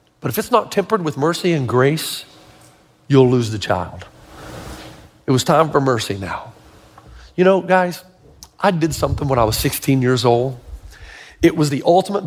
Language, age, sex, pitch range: English, 40-59, male, 120-165 Hz